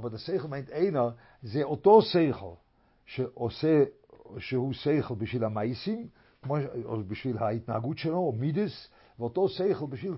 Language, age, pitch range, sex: English, 50-69, 120-160 Hz, male